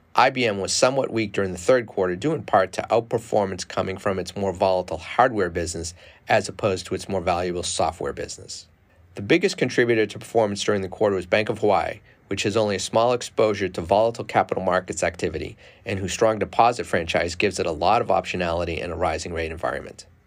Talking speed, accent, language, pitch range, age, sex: 200 wpm, American, English, 90-110 Hz, 40-59, male